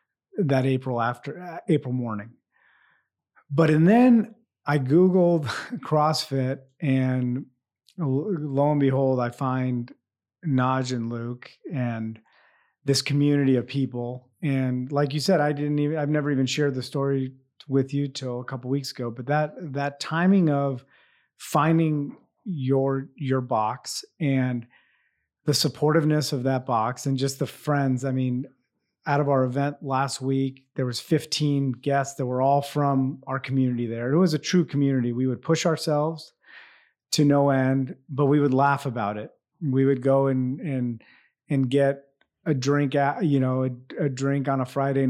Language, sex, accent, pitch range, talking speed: English, male, American, 130-145 Hz, 160 wpm